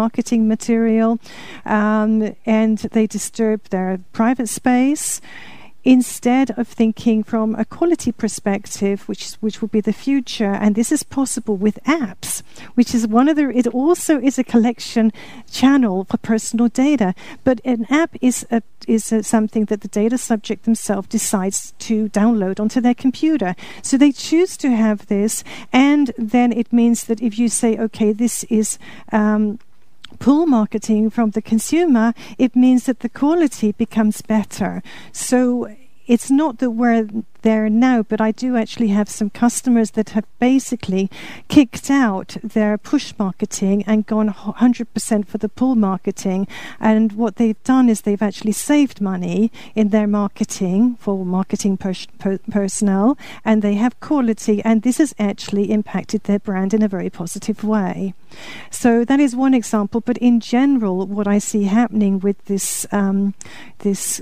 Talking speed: 160 wpm